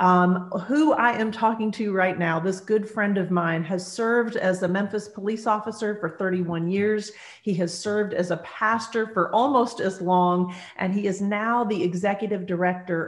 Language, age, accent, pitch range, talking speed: English, 40-59, American, 180-220 Hz, 185 wpm